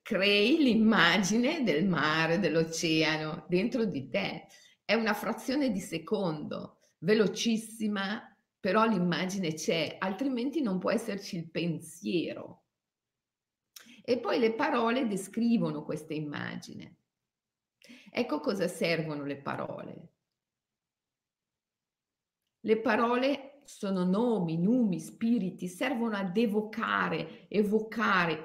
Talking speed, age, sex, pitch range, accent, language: 95 wpm, 50-69, female, 175-240 Hz, native, Italian